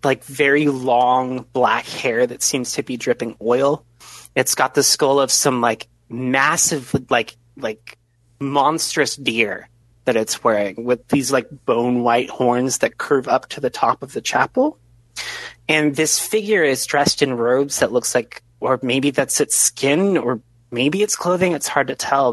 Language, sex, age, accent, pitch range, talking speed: English, male, 30-49, American, 120-155 Hz, 170 wpm